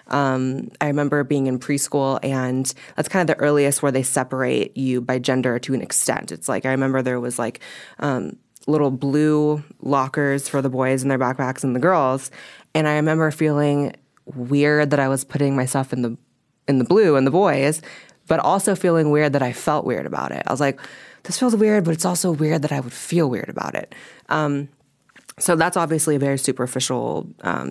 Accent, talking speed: American, 205 wpm